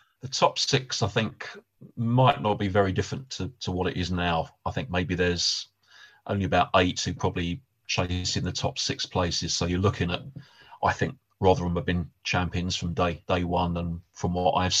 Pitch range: 90-110 Hz